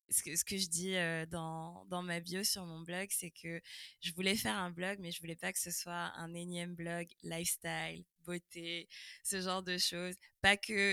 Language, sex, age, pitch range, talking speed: French, female, 20-39, 165-190 Hz, 210 wpm